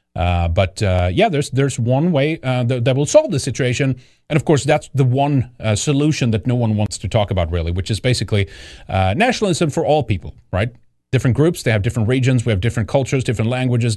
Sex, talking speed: male, 225 wpm